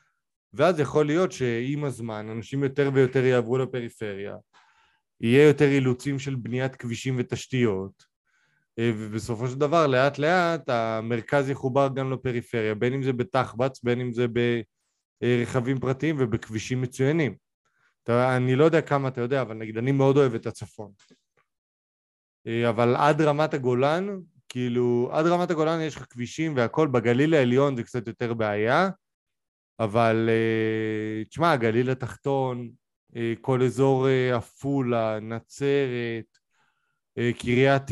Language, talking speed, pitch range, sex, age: Hebrew, 125 wpm, 115-135 Hz, male, 20-39